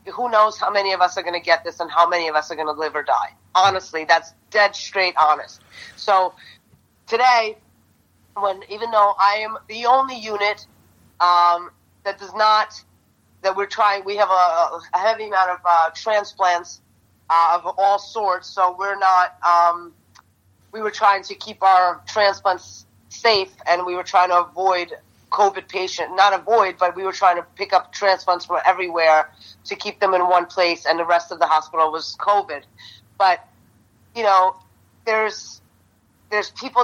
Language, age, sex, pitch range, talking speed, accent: English, 30-49, female, 170-205 Hz, 185 wpm, American